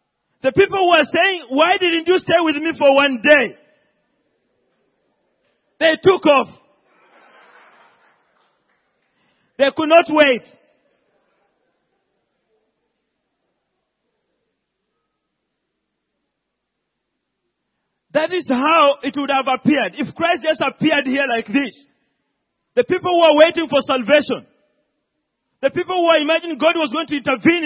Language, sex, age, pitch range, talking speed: English, male, 40-59, 255-320 Hz, 105 wpm